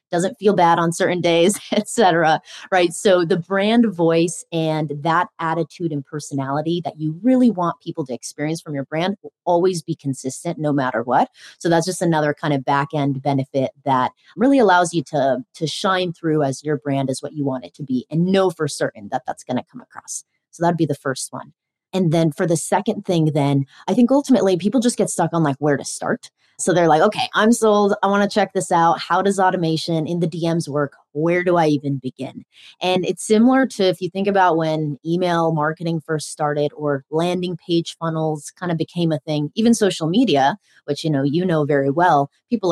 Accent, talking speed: American, 215 wpm